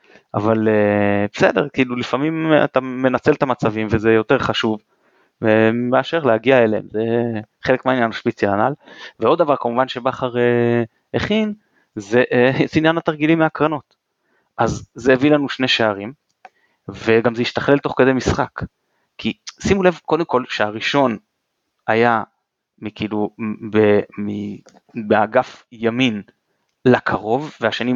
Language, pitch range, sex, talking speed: Hebrew, 115-150 Hz, male, 125 wpm